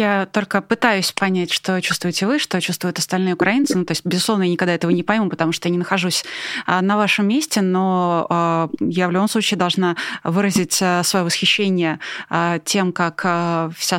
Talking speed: 170 wpm